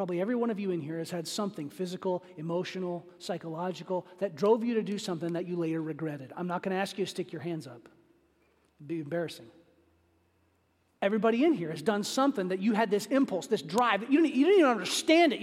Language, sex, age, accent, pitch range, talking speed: English, male, 40-59, American, 175-230 Hz, 220 wpm